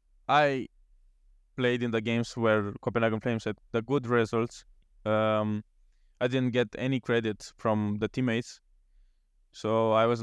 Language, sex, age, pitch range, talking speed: English, male, 20-39, 105-125 Hz, 140 wpm